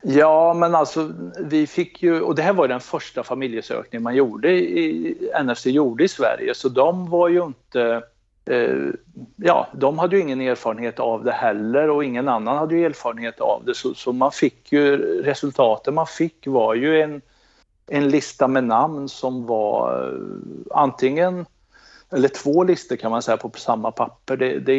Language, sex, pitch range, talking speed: Swedish, male, 120-160 Hz, 180 wpm